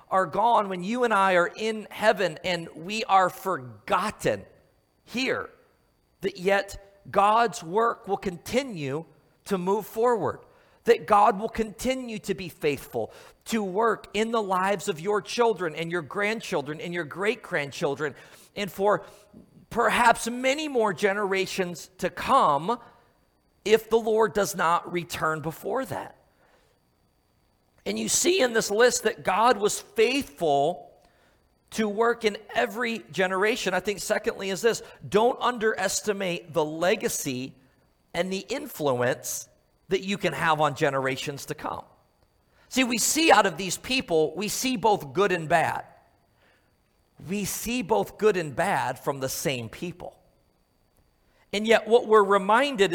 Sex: male